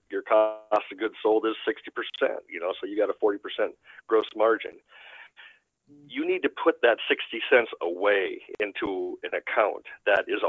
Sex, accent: male, American